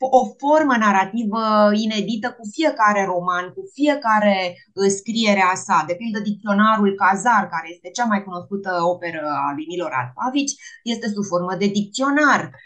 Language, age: Romanian, 20-39